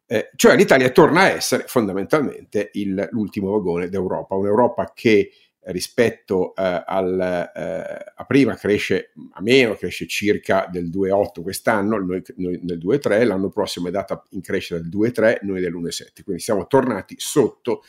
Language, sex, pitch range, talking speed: Italian, male, 95-130 Hz, 155 wpm